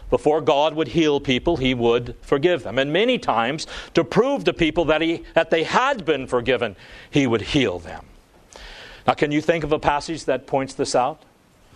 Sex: male